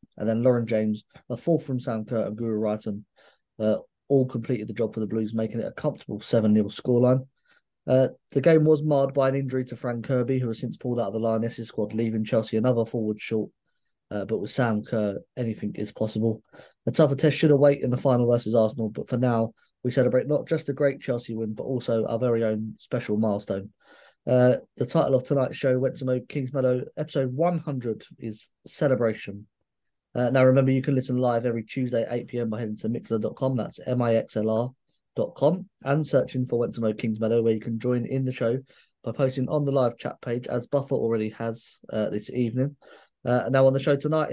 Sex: male